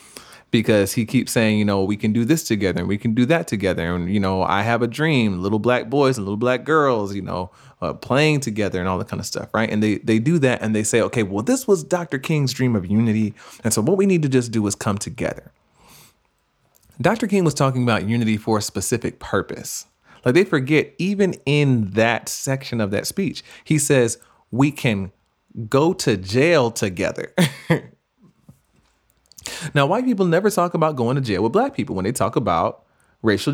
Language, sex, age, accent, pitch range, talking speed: English, male, 30-49, American, 105-145 Hz, 210 wpm